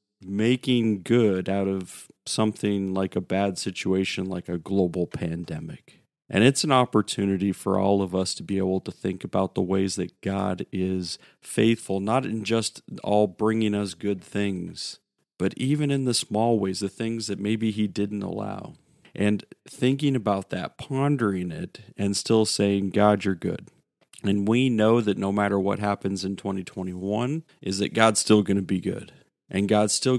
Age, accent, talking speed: 40-59, American, 175 wpm